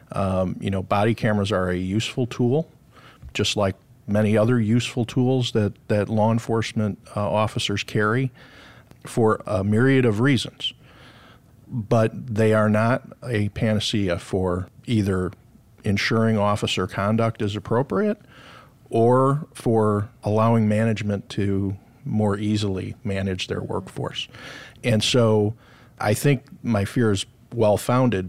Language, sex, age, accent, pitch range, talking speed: English, male, 50-69, American, 100-120 Hz, 125 wpm